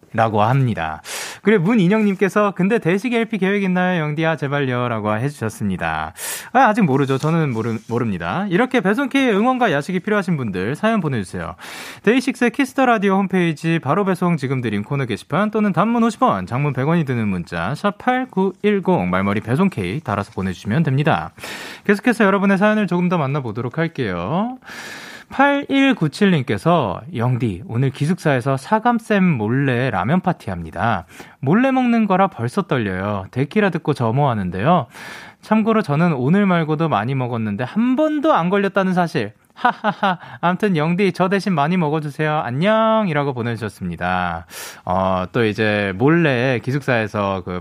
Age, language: 30-49, Korean